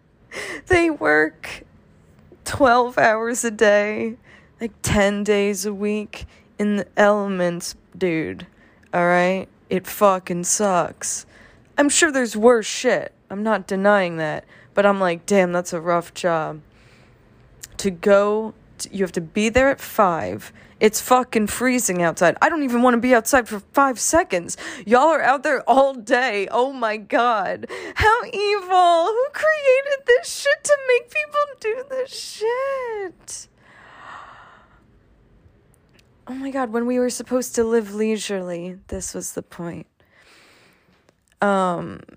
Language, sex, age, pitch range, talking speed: English, female, 20-39, 185-270 Hz, 135 wpm